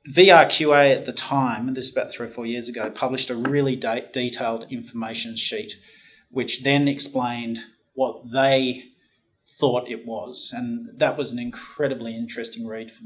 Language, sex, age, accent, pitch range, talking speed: English, male, 40-59, Australian, 120-145 Hz, 155 wpm